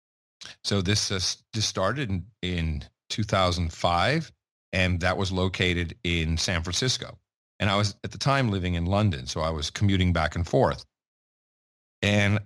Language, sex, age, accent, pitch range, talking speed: English, male, 40-59, American, 90-125 Hz, 155 wpm